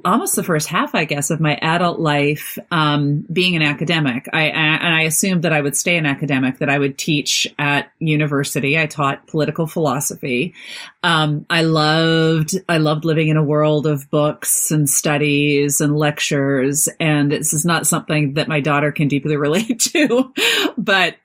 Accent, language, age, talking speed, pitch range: American, English, 40-59, 175 wpm, 145-165 Hz